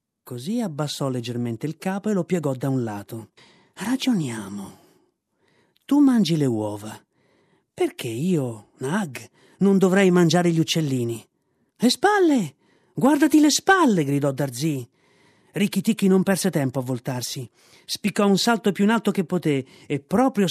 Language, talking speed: Italian, 140 wpm